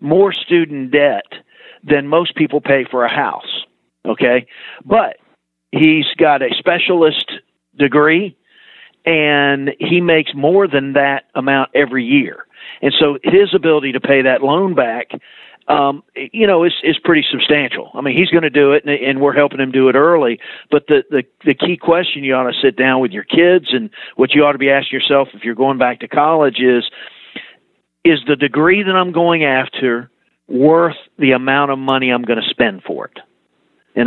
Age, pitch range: 50-69, 130-160 Hz